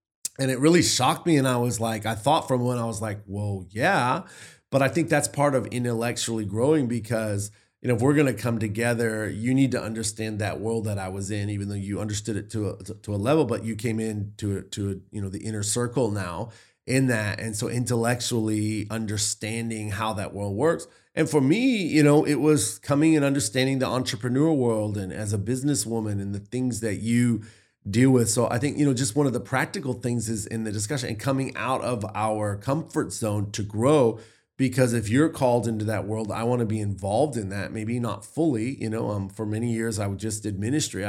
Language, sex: English, male